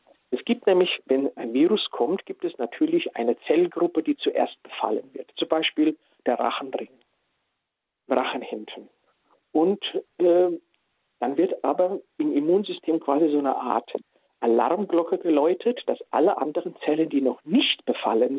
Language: German